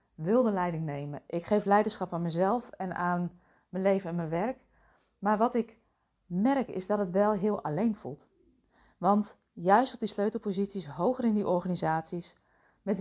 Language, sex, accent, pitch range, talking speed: Dutch, female, Dutch, 180-225 Hz, 175 wpm